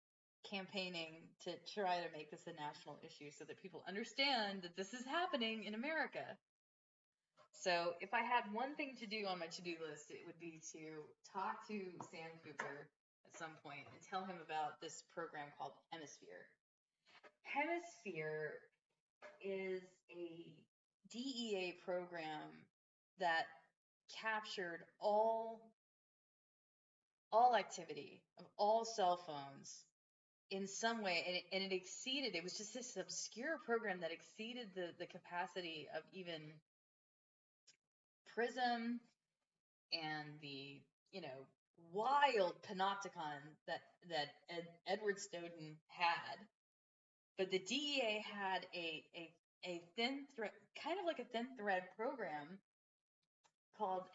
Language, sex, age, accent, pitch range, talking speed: English, female, 20-39, American, 165-225 Hz, 125 wpm